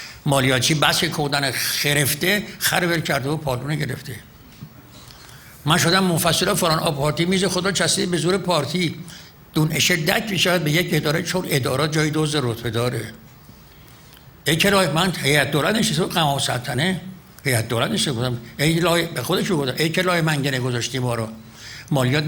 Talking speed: 145 wpm